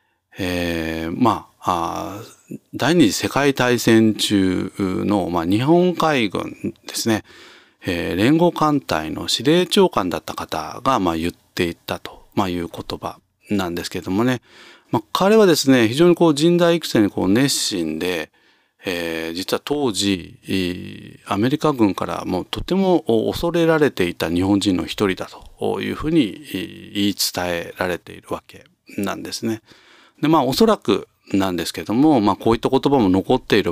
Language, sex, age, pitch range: Japanese, male, 40-59, 90-140 Hz